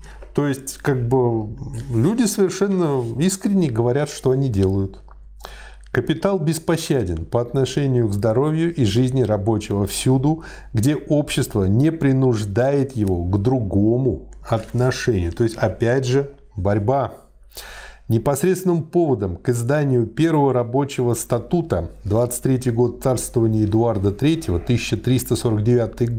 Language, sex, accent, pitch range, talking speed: Russian, male, native, 110-135 Hz, 110 wpm